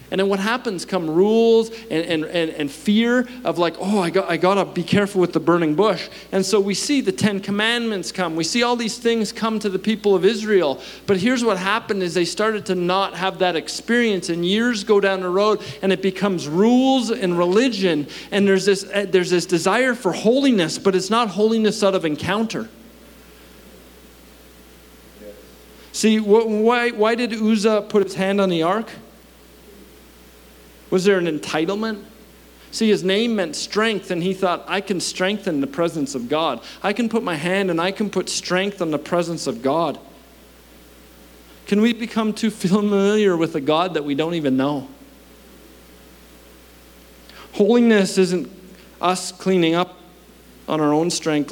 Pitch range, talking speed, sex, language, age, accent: 150-205 Hz, 175 wpm, male, English, 40-59, American